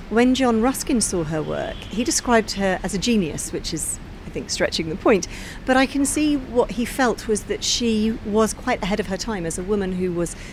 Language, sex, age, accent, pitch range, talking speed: English, female, 40-59, British, 175-230 Hz, 230 wpm